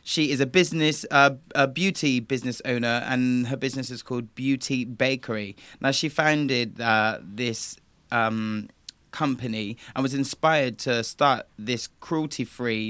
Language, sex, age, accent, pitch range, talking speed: English, male, 20-39, British, 120-150 Hz, 140 wpm